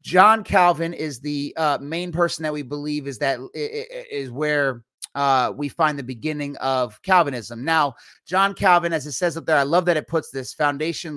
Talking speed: 195 wpm